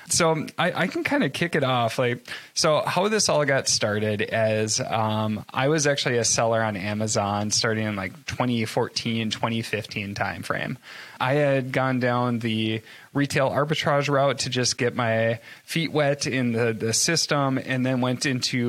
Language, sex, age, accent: English, male, 20-39, American